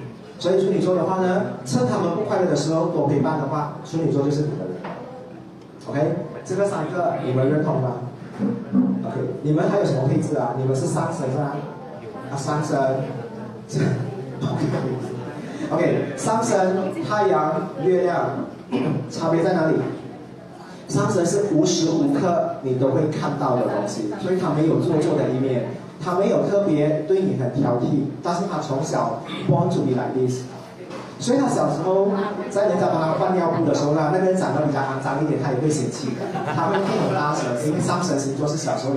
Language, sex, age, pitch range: Chinese, male, 30-49, 135-175 Hz